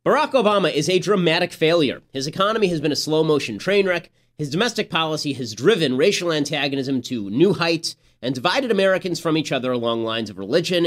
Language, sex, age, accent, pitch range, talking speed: English, male, 30-49, American, 135-180 Hz, 190 wpm